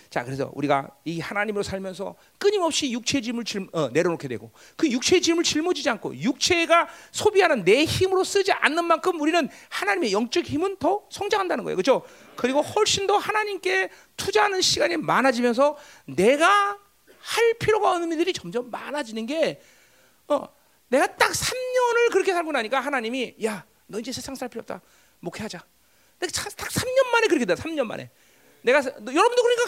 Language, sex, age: Korean, male, 40-59